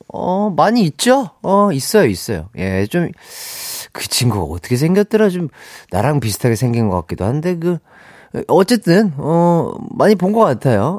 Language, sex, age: Korean, male, 30-49